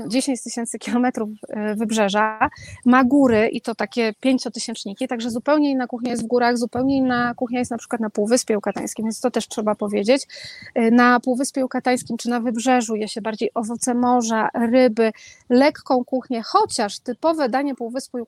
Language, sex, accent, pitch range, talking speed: Polish, female, native, 225-270 Hz, 160 wpm